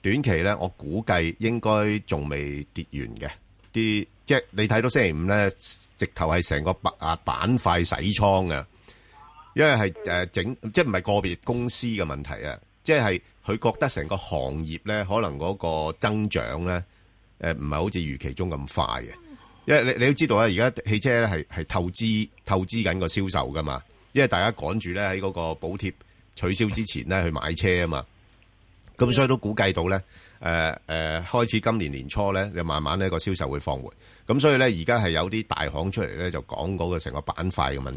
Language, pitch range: Chinese, 80-105 Hz